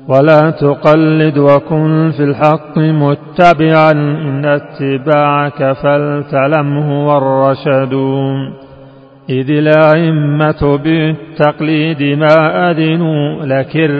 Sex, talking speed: male, 75 wpm